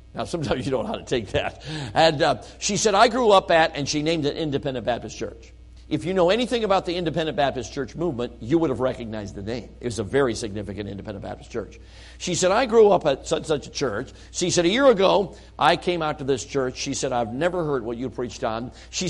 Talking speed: 250 wpm